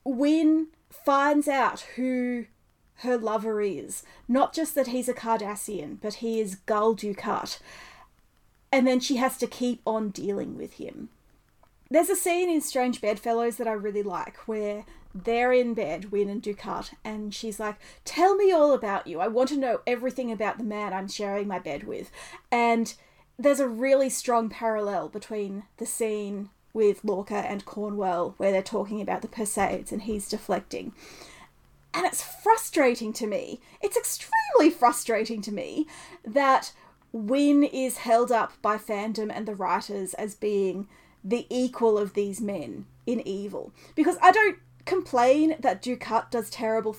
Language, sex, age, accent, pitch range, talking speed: English, female, 30-49, Australian, 210-260 Hz, 160 wpm